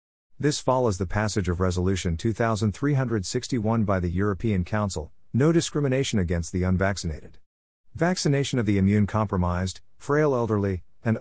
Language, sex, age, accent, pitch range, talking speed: English, male, 50-69, American, 90-115 Hz, 125 wpm